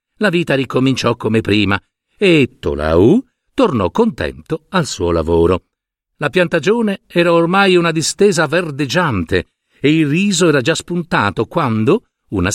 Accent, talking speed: native, 130 wpm